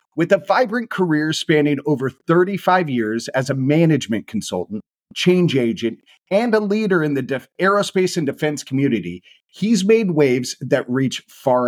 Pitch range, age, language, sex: 135-195 Hz, 40-59, English, male